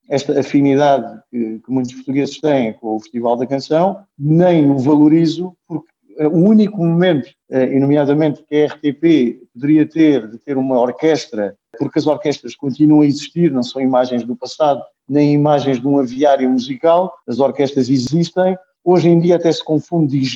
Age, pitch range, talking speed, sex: 50-69, 145-185 Hz, 170 wpm, male